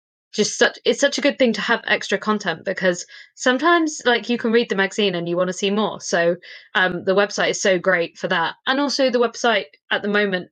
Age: 20-39